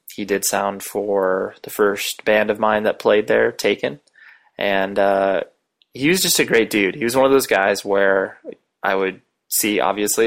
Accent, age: American, 20-39